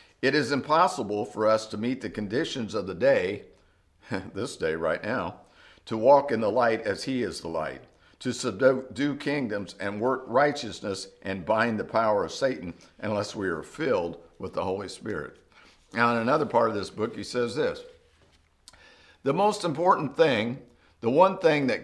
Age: 60-79